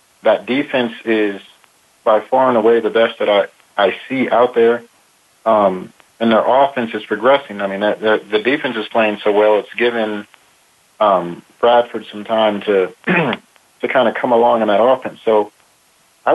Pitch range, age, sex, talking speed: 105-120 Hz, 40-59, male, 175 wpm